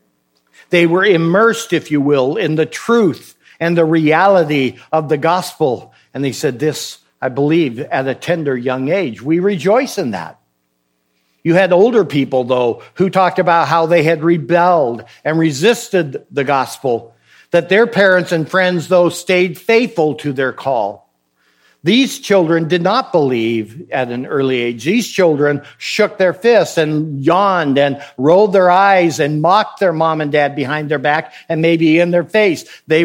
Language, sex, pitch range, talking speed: English, male, 140-180 Hz, 165 wpm